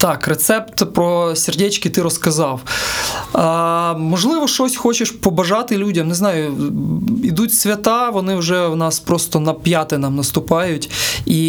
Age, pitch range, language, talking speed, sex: 20-39, 155-200 Hz, Ukrainian, 135 wpm, male